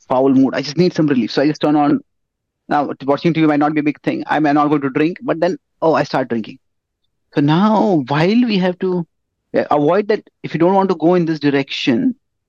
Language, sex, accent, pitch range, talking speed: English, male, Indian, 130-180 Hz, 240 wpm